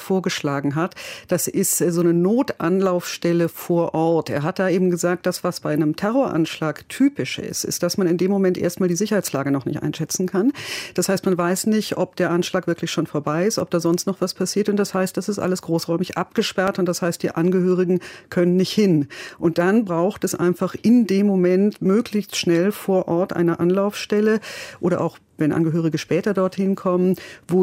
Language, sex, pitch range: German, female, 170-200 Hz